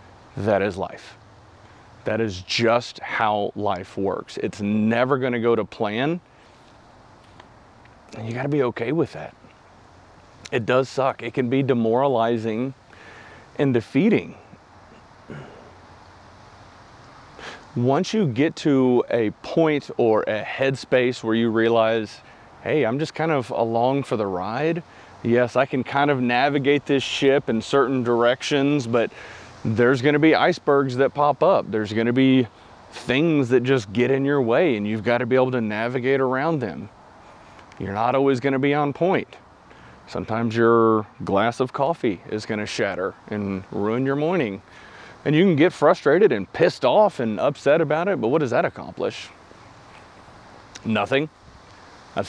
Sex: male